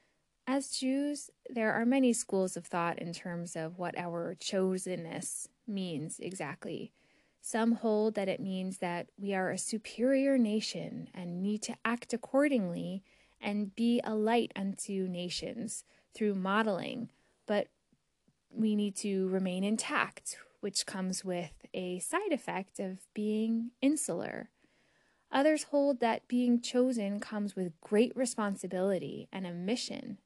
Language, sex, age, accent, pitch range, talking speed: English, female, 20-39, American, 185-235 Hz, 135 wpm